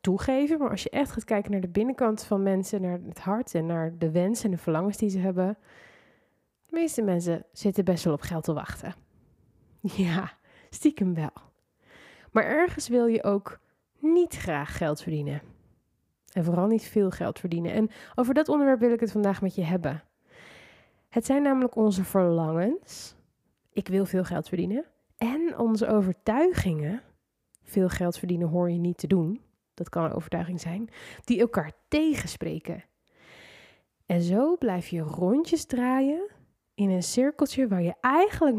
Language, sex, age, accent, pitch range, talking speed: Dutch, female, 20-39, Dutch, 175-240 Hz, 165 wpm